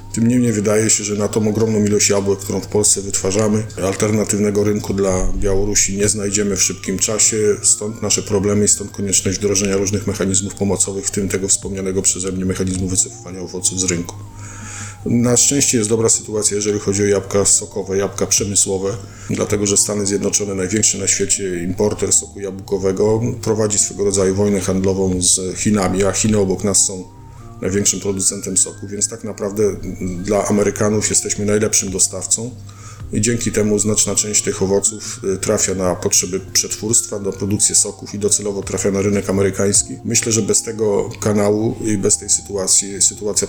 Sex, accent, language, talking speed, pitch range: male, native, Polish, 165 wpm, 95-105 Hz